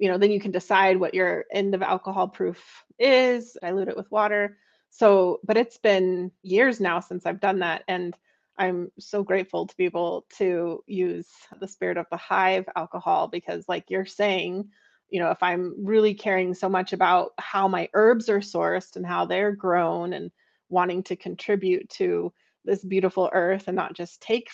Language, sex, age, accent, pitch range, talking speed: English, female, 30-49, American, 180-210 Hz, 185 wpm